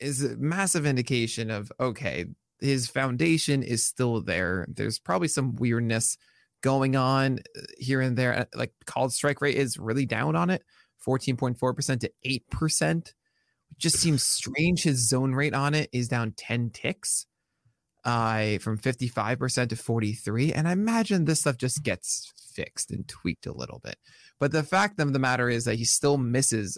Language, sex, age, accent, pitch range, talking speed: English, male, 20-39, American, 115-145 Hz, 165 wpm